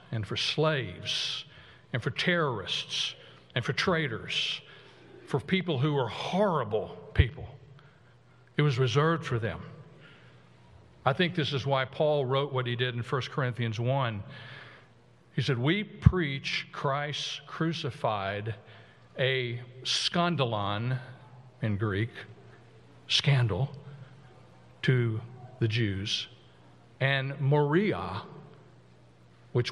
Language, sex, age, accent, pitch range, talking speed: English, male, 60-79, American, 115-145 Hz, 105 wpm